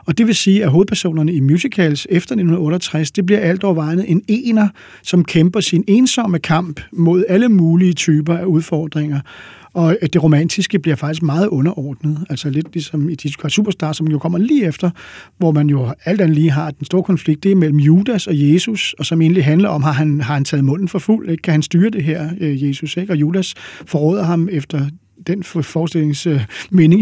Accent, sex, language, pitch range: native, male, Danish, 155-185 Hz